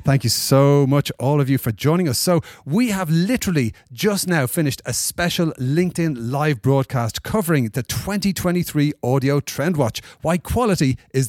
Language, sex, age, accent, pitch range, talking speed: English, male, 30-49, Irish, 125-175 Hz, 165 wpm